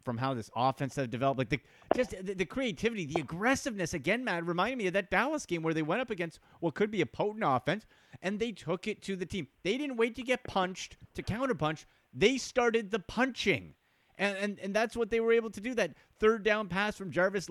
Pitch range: 140-200 Hz